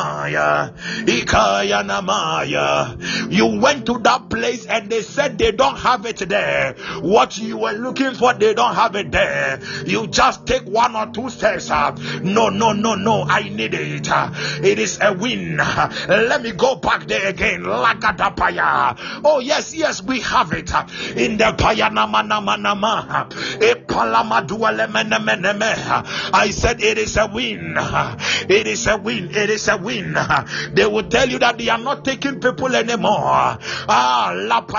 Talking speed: 140 wpm